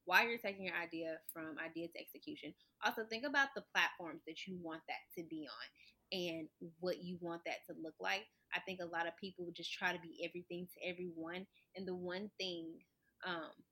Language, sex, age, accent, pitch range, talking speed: English, female, 20-39, American, 170-190 Hz, 210 wpm